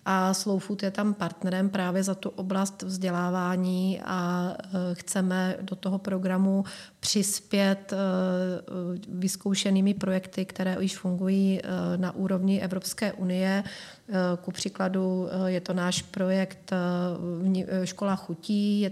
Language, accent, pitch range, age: Czech, native, 185-195 Hz, 30-49